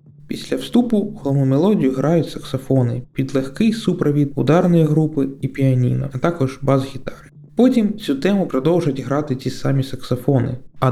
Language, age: Ukrainian, 20-39